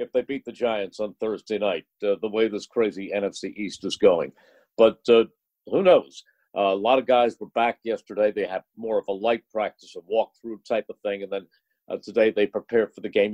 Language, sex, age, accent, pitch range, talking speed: English, male, 50-69, American, 105-130 Hz, 225 wpm